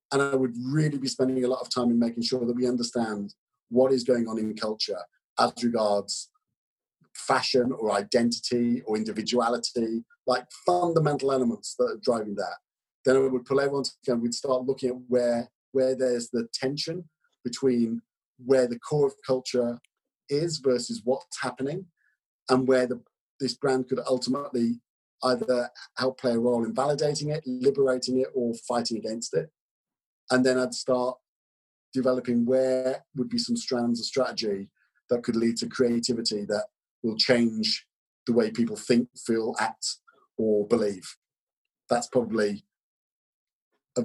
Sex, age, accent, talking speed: male, 40-59, British, 155 wpm